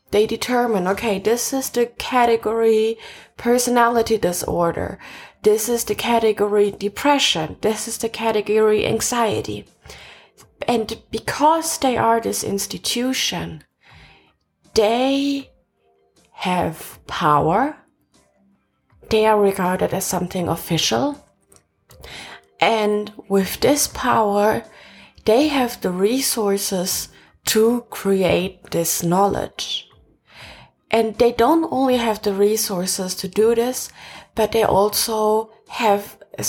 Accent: German